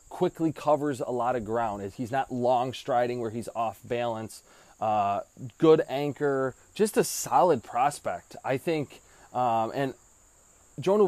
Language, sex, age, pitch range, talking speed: English, male, 20-39, 110-135 Hz, 140 wpm